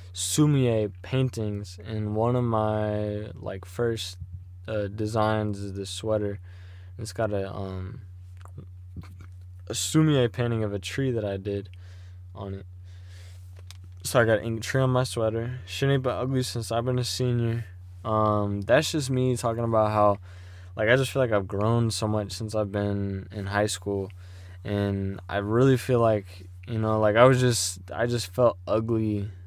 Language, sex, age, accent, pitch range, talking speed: English, male, 20-39, American, 90-115 Hz, 165 wpm